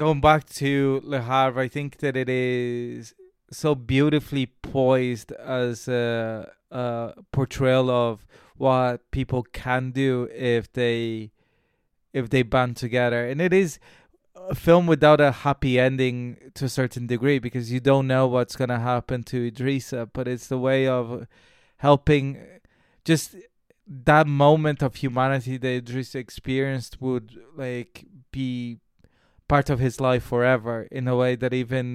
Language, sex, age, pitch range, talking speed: English, male, 20-39, 125-140 Hz, 145 wpm